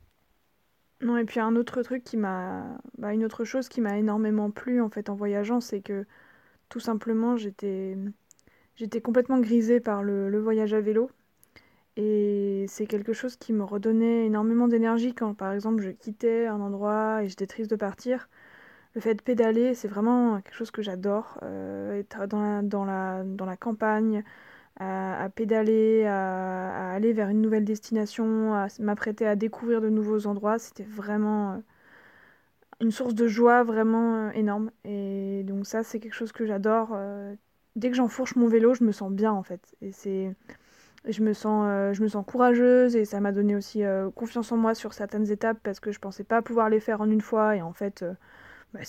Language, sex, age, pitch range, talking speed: French, female, 20-39, 205-230 Hz, 195 wpm